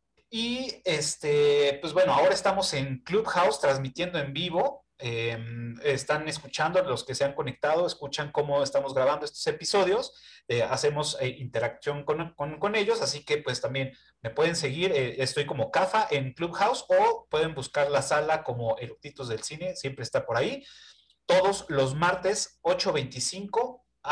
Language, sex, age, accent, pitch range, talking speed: Spanish, male, 30-49, Mexican, 130-180 Hz, 155 wpm